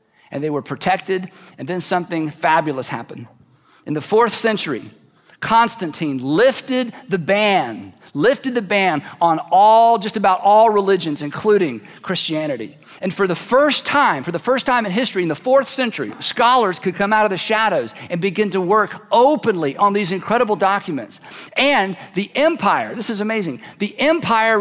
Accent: American